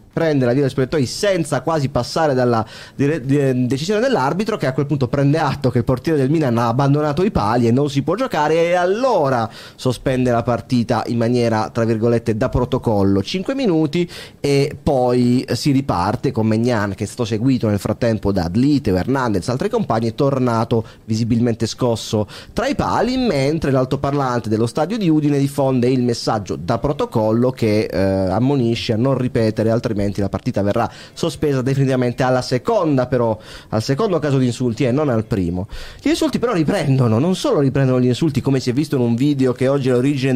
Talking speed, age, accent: 185 wpm, 30-49, native